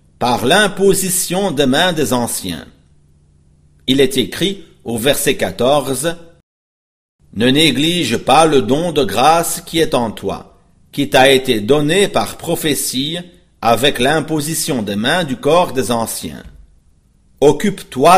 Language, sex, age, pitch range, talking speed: English, male, 50-69, 105-170 Hz, 125 wpm